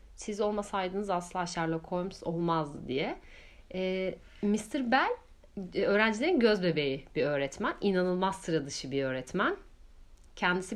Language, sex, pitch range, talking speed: Turkish, female, 170-215 Hz, 105 wpm